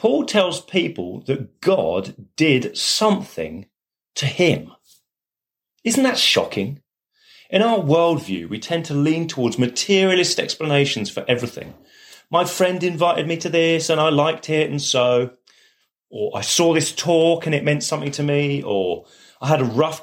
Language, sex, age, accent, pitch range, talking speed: English, male, 30-49, British, 135-185 Hz, 155 wpm